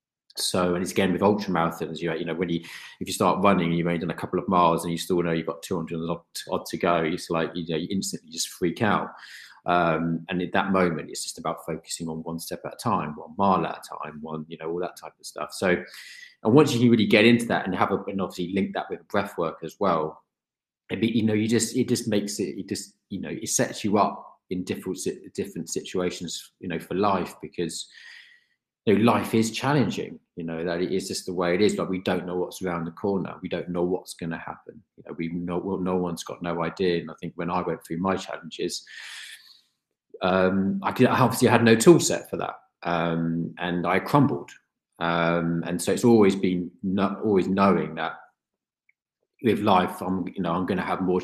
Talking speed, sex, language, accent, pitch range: 240 wpm, male, English, British, 85-100 Hz